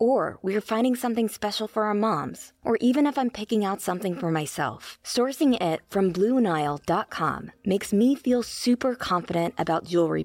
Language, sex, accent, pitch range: English, female, American, 185-235 Hz